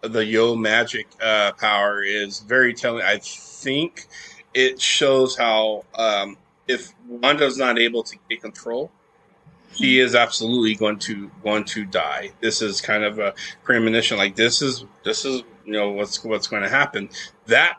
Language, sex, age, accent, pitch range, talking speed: English, male, 30-49, American, 110-140 Hz, 160 wpm